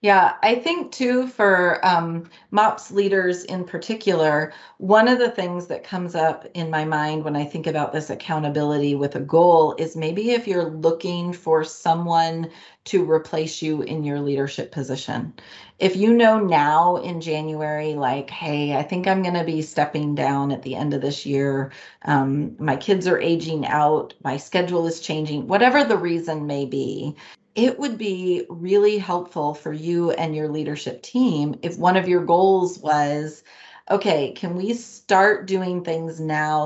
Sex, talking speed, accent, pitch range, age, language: female, 170 wpm, American, 150-195 Hz, 30-49, English